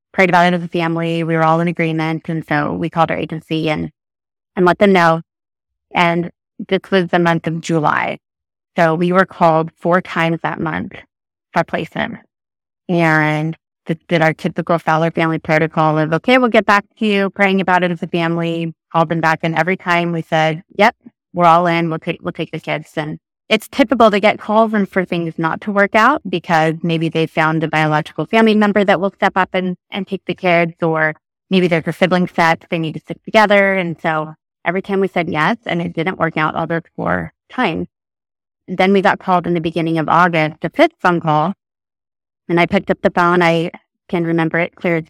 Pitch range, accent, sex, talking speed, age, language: 160-185 Hz, American, female, 215 wpm, 20-39, English